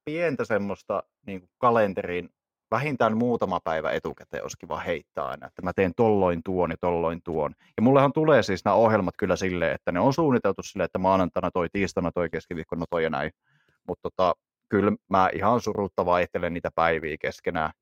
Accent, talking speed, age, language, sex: native, 175 wpm, 30-49, Finnish, male